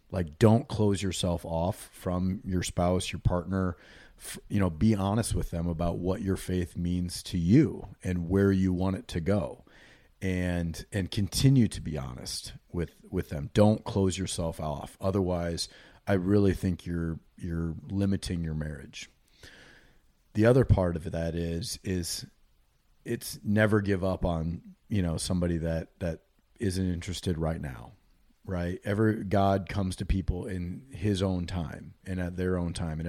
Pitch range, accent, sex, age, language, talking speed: 85-100 Hz, American, male, 30-49, English, 160 wpm